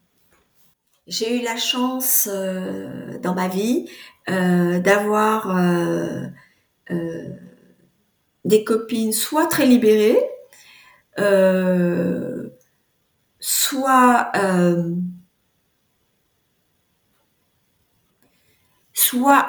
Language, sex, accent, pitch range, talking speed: French, female, French, 180-230 Hz, 65 wpm